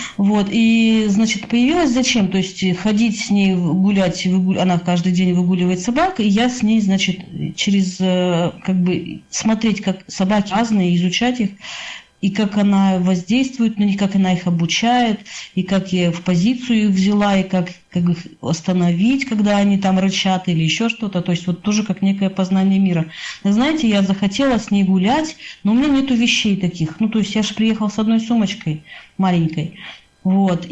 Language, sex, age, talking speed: Russian, female, 40-59, 180 wpm